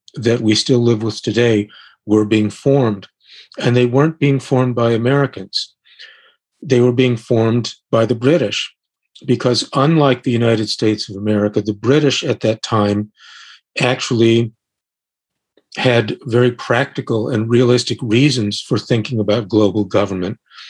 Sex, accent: male, American